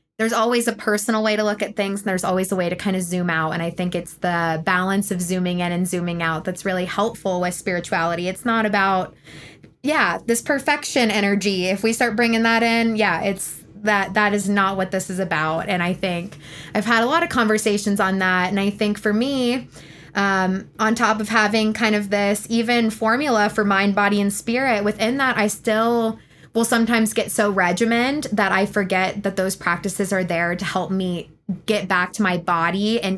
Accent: American